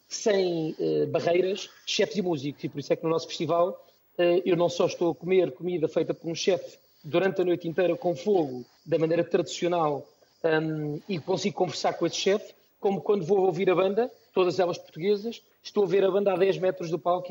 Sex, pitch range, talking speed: male, 170-205 Hz, 210 wpm